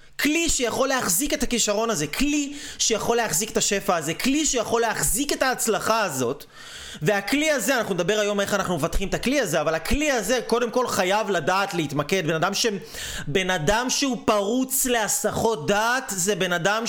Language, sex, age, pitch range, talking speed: Hebrew, male, 30-49, 190-245 Hz, 175 wpm